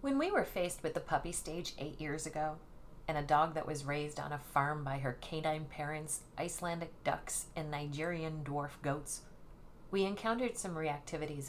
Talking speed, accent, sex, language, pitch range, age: 180 wpm, American, female, English, 150-185 Hz, 40-59